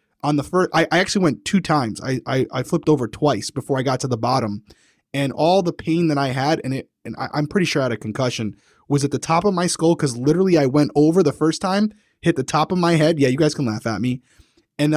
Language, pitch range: English, 135-175 Hz